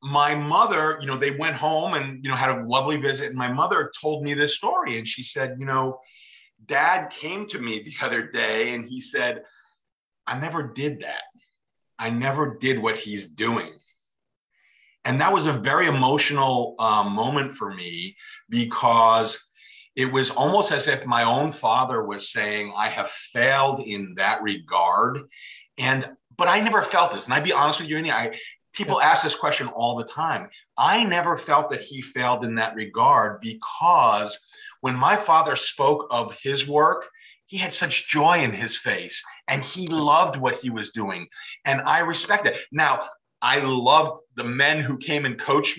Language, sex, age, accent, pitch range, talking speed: English, male, 40-59, American, 120-150 Hz, 180 wpm